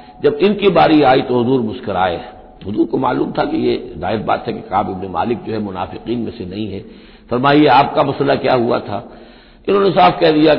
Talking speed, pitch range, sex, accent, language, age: 210 wpm, 110-150 Hz, male, native, Hindi, 60-79